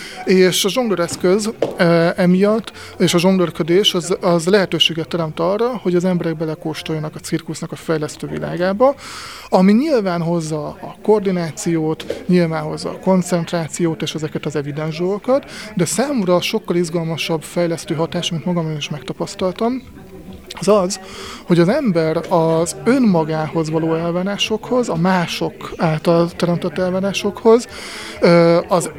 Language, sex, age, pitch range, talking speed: Hungarian, male, 30-49, 165-195 Hz, 125 wpm